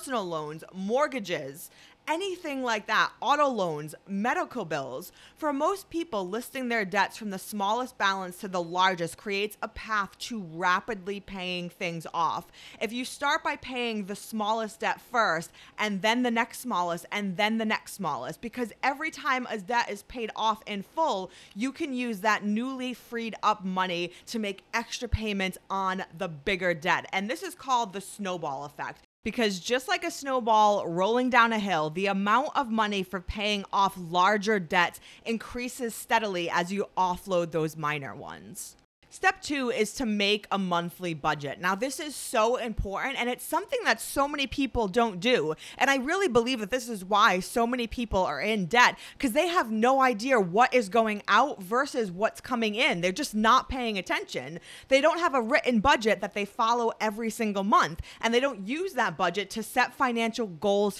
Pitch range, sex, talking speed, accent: 190-250 Hz, female, 185 wpm, American